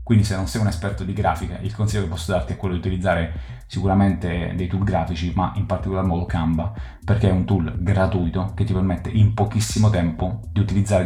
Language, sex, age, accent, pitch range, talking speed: Italian, male, 30-49, native, 85-105 Hz, 210 wpm